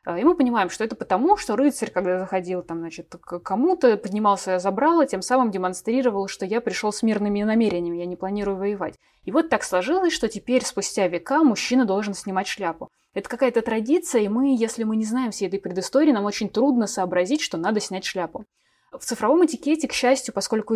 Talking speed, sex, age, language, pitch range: 195 wpm, female, 20-39, Russian, 210-260 Hz